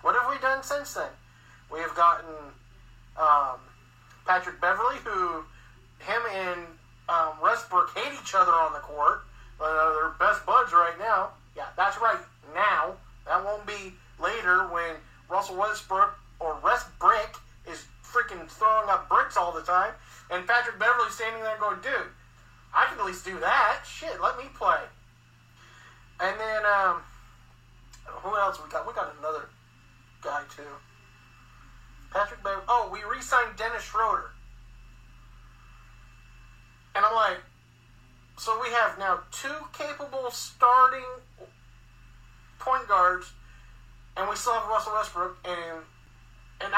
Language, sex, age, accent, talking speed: English, male, 40-59, American, 135 wpm